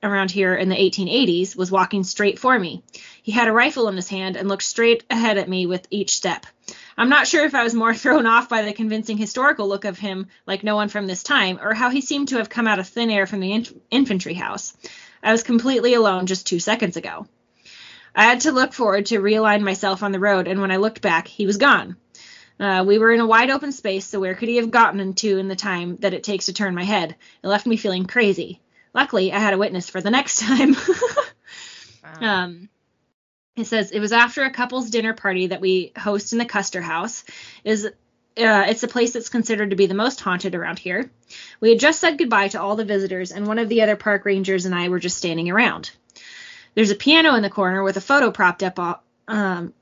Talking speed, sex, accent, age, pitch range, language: 235 wpm, female, American, 20-39, 190-235 Hz, English